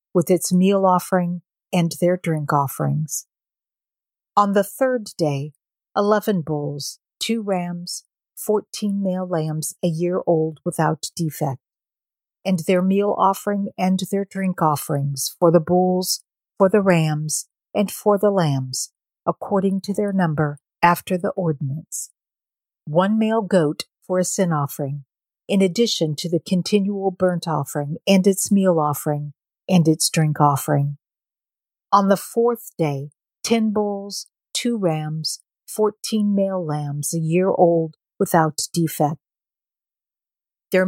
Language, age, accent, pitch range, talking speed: English, 50-69, American, 155-200 Hz, 130 wpm